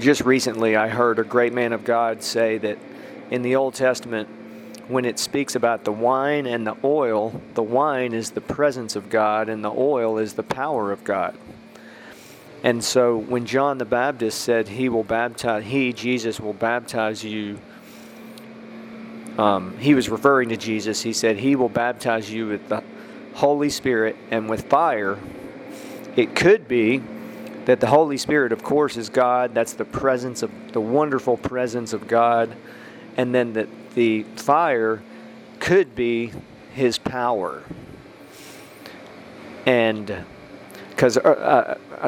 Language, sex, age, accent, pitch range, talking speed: English, male, 40-59, American, 110-130 Hz, 150 wpm